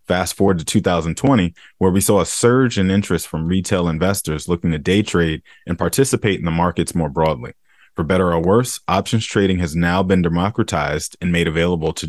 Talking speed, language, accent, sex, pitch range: 195 wpm, English, American, male, 85-100 Hz